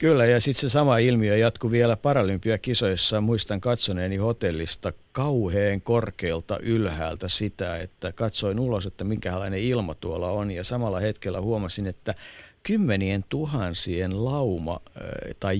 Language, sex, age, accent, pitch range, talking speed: Finnish, male, 50-69, native, 95-130 Hz, 125 wpm